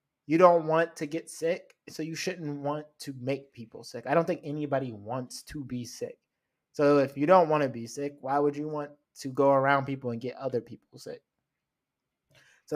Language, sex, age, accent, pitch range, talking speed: English, male, 20-39, American, 125-150 Hz, 205 wpm